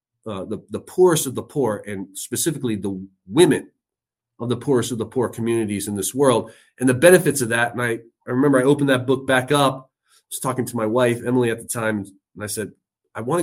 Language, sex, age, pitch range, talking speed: English, male, 30-49, 115-140 Hz, 230 wpm